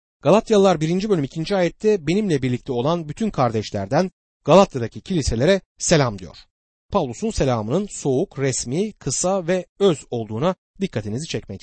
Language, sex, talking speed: Turkish, male, 125 wpm